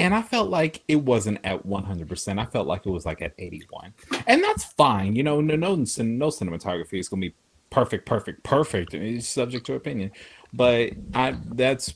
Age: 30-49